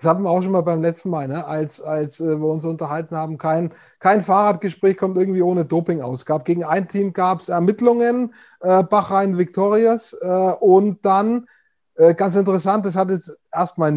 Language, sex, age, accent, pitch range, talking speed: German, male, 30-49, German, 170-205 Hz, 170 wpm